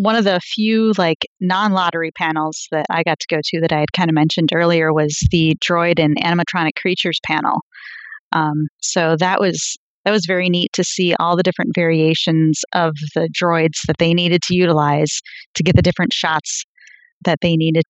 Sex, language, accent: female, English, American